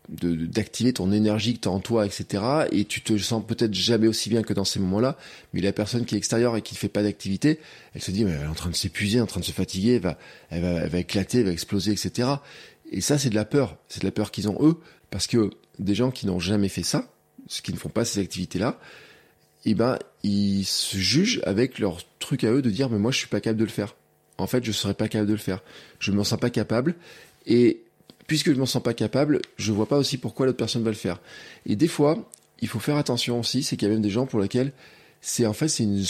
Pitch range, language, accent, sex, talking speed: 100-130 Hz, French, French, male, 270 wpm